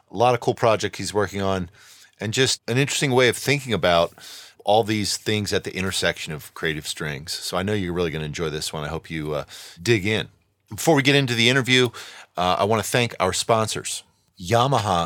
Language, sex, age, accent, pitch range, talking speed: English, male, 40-59, American, 90-115 Hz, 220 wpm